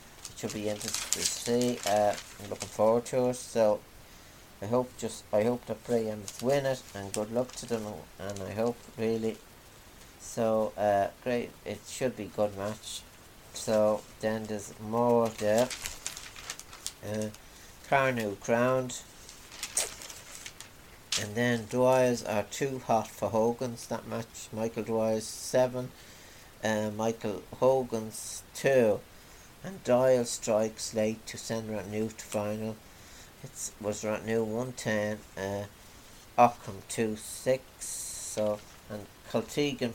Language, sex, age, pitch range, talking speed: English, male, 60-79, 105-120 Hz, 130 wpm